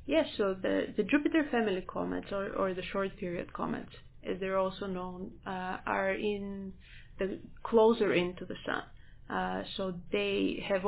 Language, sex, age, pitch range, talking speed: English, female, 20-39, 185-210 Hz, 165 wpm